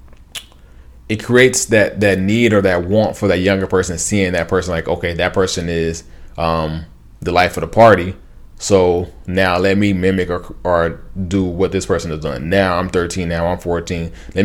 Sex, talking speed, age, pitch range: male, 190 wpm, 20-39, 85-95 Hz